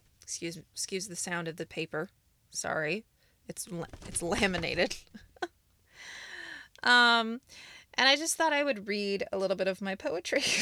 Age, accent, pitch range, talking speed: 20-39, American, 165-215 Hz, 140 wpm